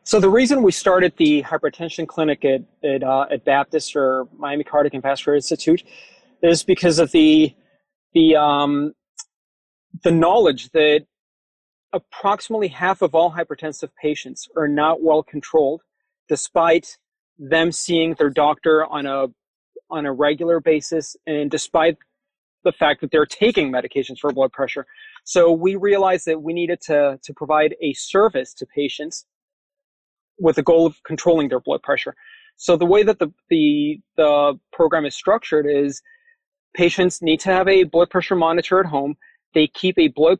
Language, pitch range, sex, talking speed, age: English, 145-180 Hz, male, 155 wpm, 30-49